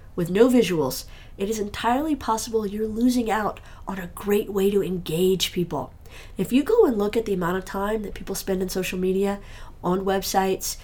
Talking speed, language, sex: 195 wpm, English, female